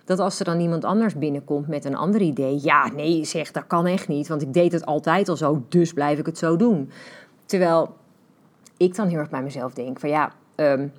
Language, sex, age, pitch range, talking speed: Dutch, female, 30-49, 145-180 Hz, 230 wpm